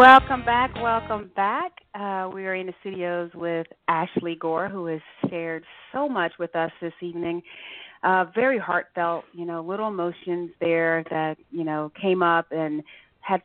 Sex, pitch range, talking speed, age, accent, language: female, 165-195 Hz, 165 wpm, 30-49, American, English